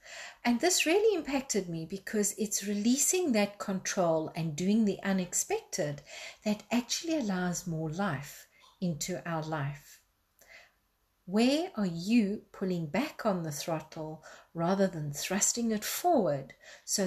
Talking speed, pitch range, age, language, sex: 125 wpm, 170-240 Hz, 50-69, English, female